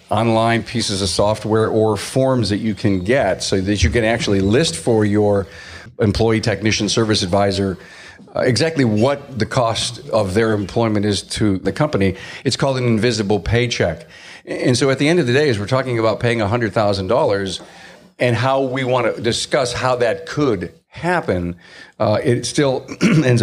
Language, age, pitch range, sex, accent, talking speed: English, 50-69, 100-125 Hz, male, American, 170 wpm